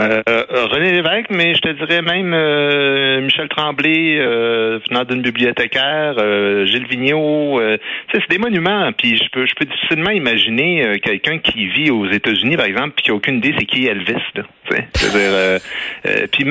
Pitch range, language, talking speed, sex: 100-150 Hz, French, 180 wpm, male